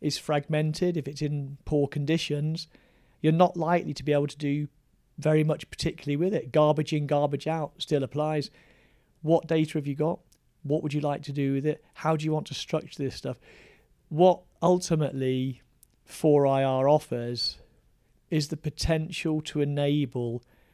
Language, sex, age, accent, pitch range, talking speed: English, male, 40-59, British, 135-155 Hz, 160 wpm